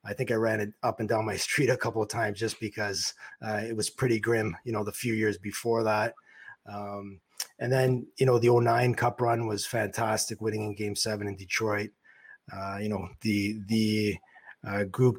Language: English